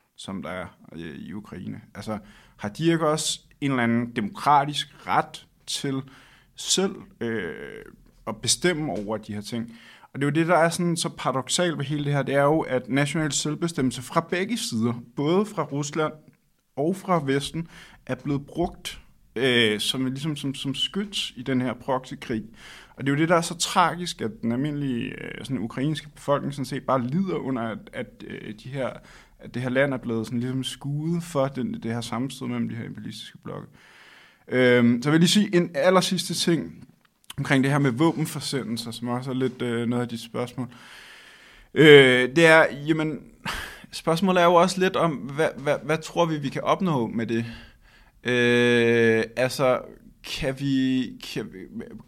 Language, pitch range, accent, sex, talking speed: Danish, 125-165 Hz, native, male, 185 wpm